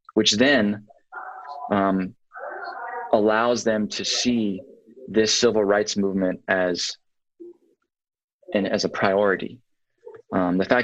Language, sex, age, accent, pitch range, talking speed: English, male, 20-39, American, 100-125 Hz, 105 wpm